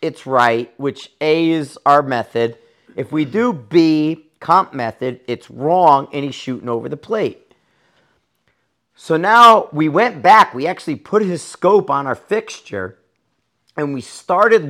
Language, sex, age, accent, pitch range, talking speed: English, male, 40-59, American, 125-160 Hz, 150 wpm